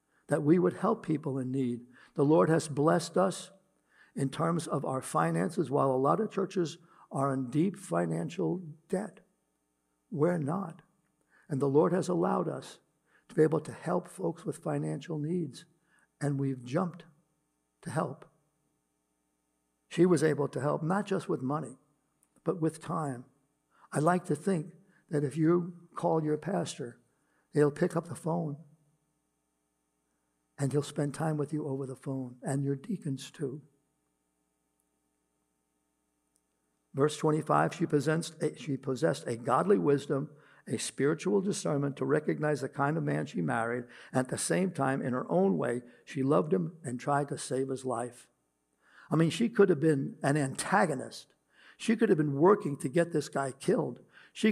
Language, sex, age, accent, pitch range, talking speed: English, male, 60-79, American, 130-170 Hz, 160 wpm